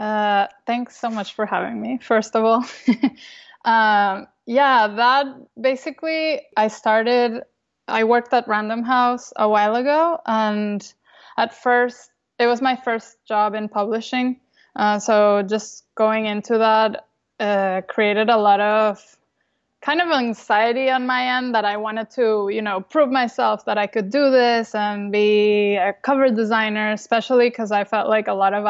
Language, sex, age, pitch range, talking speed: English, female, 20-39, 210-245 Hz, 160 wpm